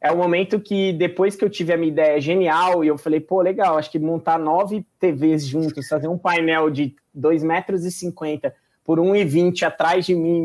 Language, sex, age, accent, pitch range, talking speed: Portuguese, male, 20-39, Brazilian, 150-190 Hz, 190 wpm